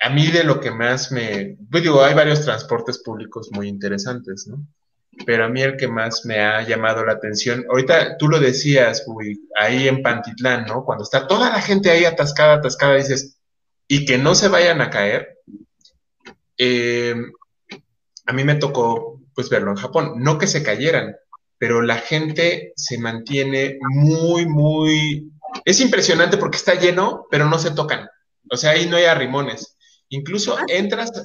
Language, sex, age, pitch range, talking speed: Spanish, male, 20-39, 125-170 Hz, 170 wpm